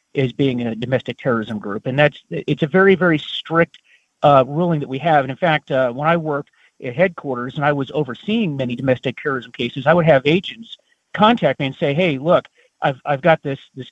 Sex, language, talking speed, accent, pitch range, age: male, English, 220 wpm, American, 135-180 Hz, 40-59